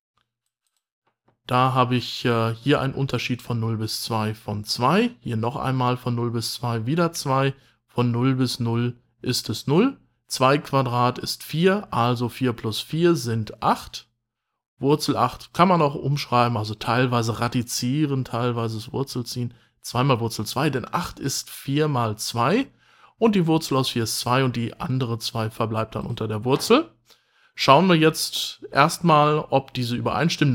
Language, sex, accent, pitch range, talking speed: German, male, German, 115-140 Hz, 165 wpm